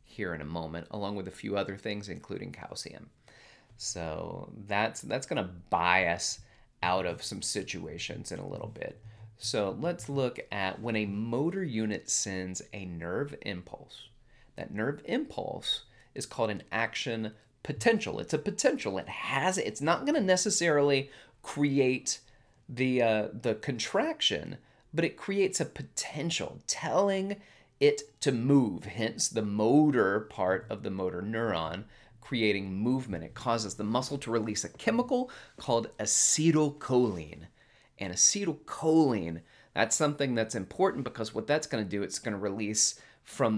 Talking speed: 150 wpm